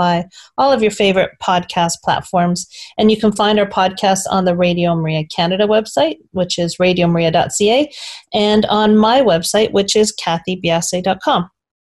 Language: English